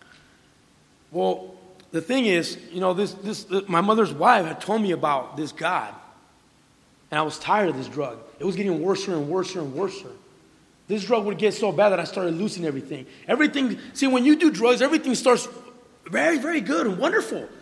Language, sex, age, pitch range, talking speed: English, male, 30-49, 175-245 Hz, 200 wpm